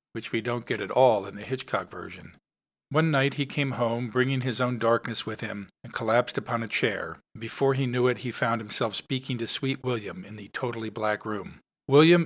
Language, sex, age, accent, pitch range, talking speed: English, male, 50-69, American, 120-145 Hz, 210 wpm